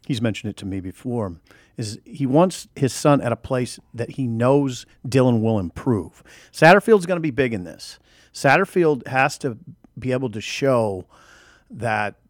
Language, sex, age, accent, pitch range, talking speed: English, male, 40-59, American, 105-145 Hz, 170 wpm